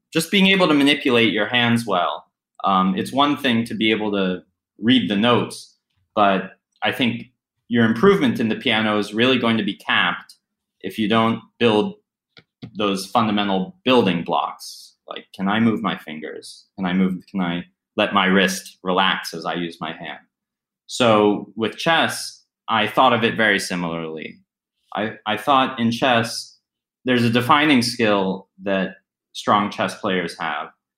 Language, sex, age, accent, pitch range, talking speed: English, male, 30-49, American, 95-115 Hz, 160 wpm